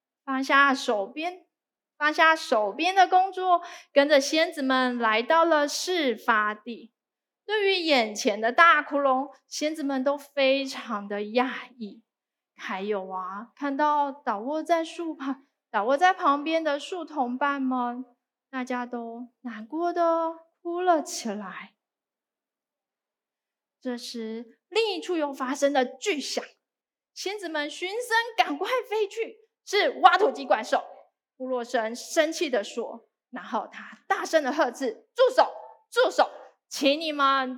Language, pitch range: Chinese, 245-335 Hz